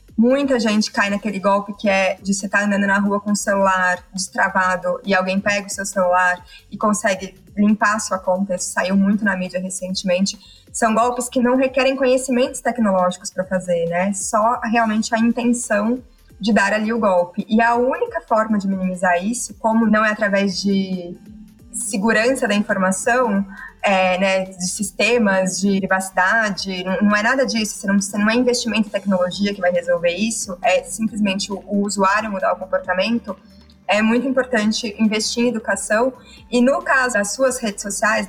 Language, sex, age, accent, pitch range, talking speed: Portuguese, female, 20-39, Brazilian, 190-230 Hz, 175 wpm